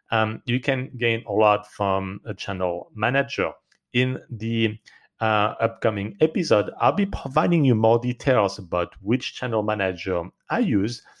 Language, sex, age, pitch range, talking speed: English, male, 40-59, 100-130 Hz, 145 wpm